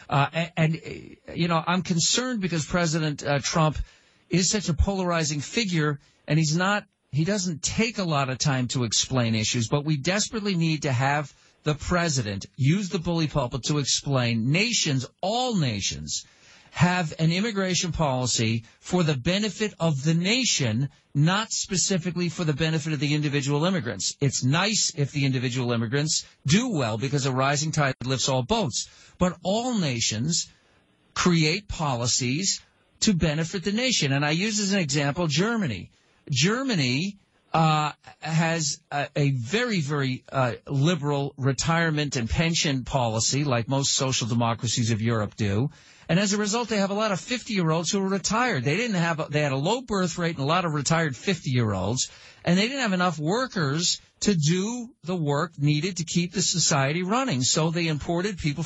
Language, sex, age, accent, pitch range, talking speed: English, male, 50-69, American, 140-180 Hz, 165 wpm